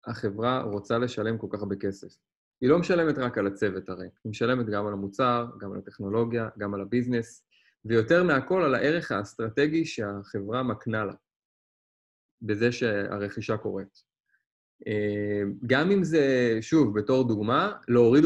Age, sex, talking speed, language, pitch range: 20-39, male, 140 wpm, Hebrew, 105-135 Hz